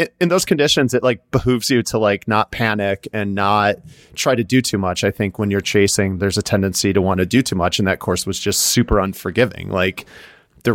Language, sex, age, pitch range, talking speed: English, male, 30-49, 100-125 Hz, 230 wpm